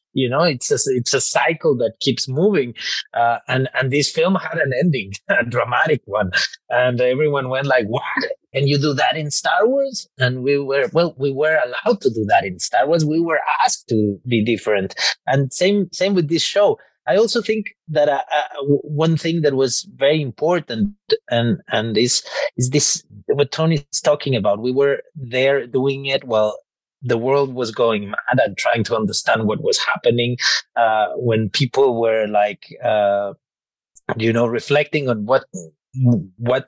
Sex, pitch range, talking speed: male, 120-155 Hz, 180 wpm